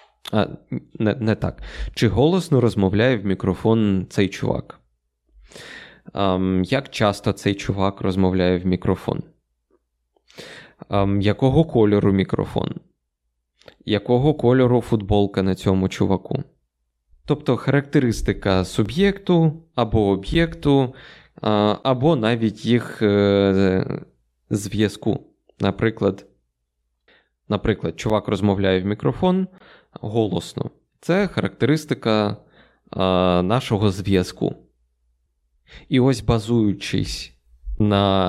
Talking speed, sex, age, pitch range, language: 85 wpm, male, 20-39, 90-125 Hz, Ukrainian